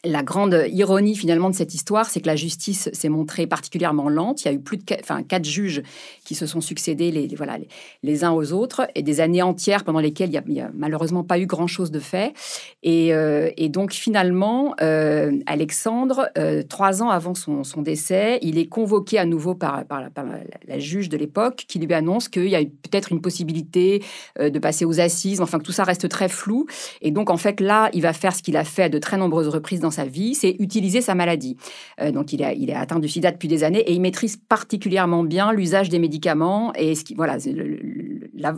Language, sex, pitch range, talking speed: French, female, 160-200 Hz, 240 wpm